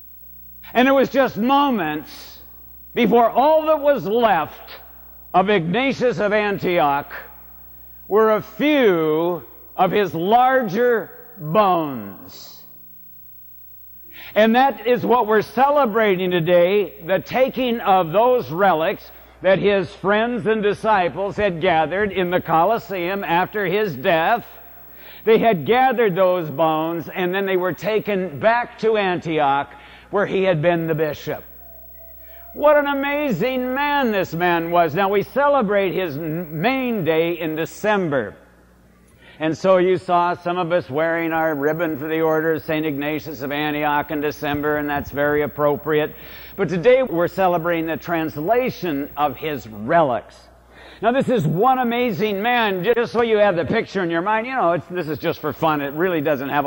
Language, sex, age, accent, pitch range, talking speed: English, male, 60-79, American, 150-220 Hz, 145 wpm